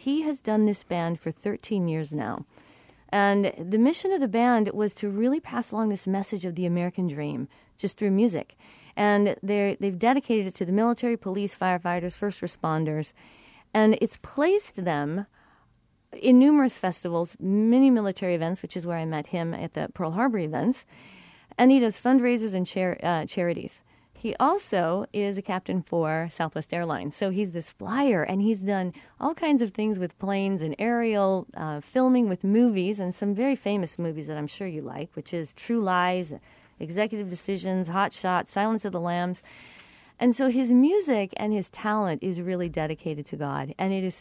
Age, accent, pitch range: 40-59, American, 175-225 Hz